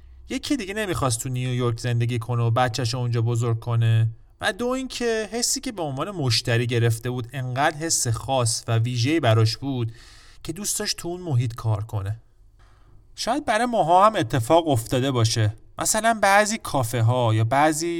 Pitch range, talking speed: 115-165 Hz, 165 wpm